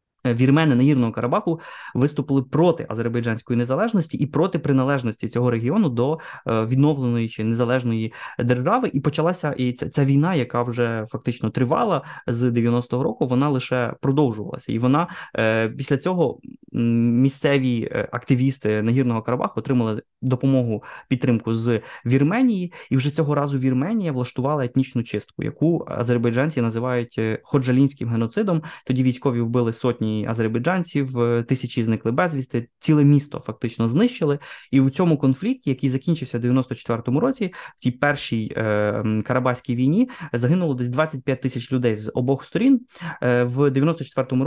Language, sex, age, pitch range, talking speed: Ukrainian, male, 20-39, 120-145 Hz, 130 wpm